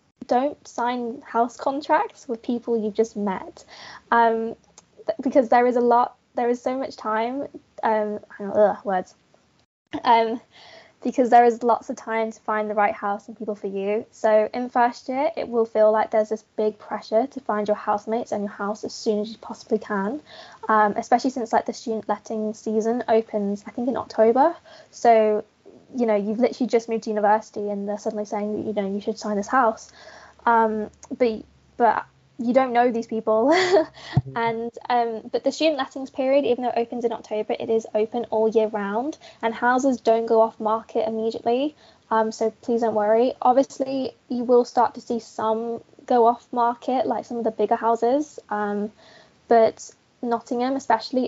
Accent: British